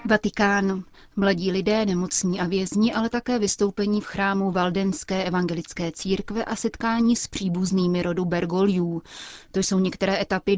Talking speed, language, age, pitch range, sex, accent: 135 wpm, Czech, 30-49, 180-210 Hz, female, native